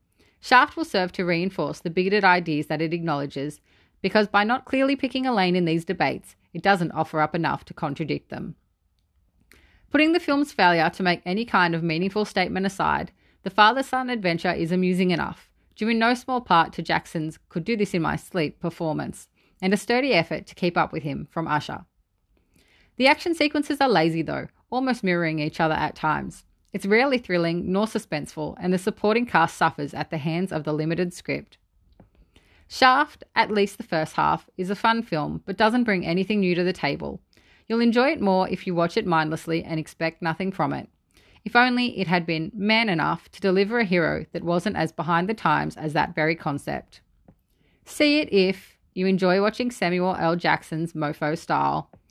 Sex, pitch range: female, 160-215 Hz